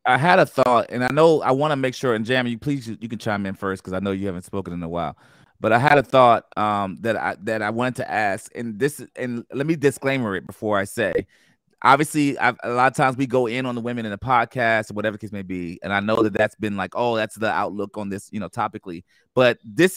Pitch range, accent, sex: 115-160 Hz, American, male